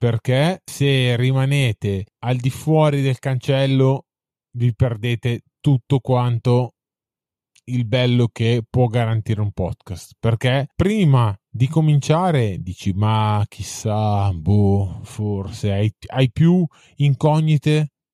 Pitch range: 115-140 Hz